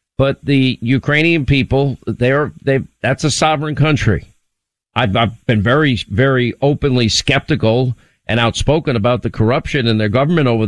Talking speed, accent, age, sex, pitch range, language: 150 wpm, American, 50-69, male, 115-140 Hz, English